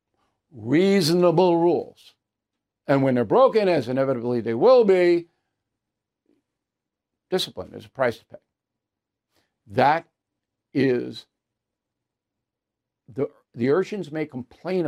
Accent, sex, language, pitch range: American, male, English, 130-160 Hz